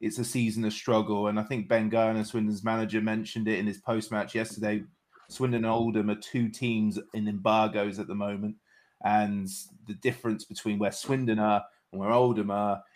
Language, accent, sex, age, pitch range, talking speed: English, British, male, 20-39, 105-120 Hz, 190 wpm